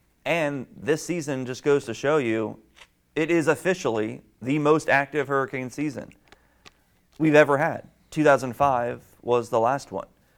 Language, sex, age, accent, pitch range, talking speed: English, male, 30-49, American, 110-140 Hz, 140 wpm